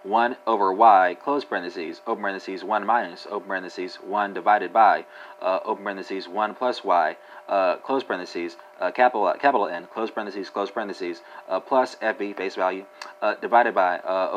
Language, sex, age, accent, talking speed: English, male, 30-49, American, 165 wpm